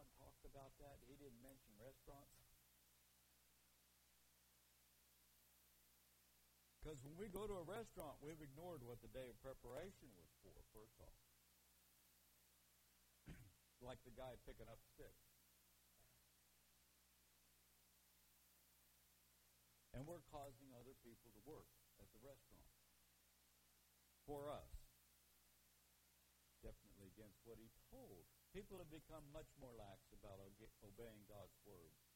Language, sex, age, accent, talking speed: English, male, 60-79, American, 105 wpm